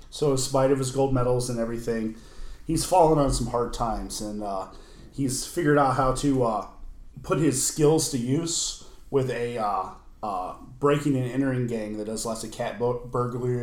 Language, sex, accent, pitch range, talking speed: English, male, American, 115-140 Hz, 185 wpm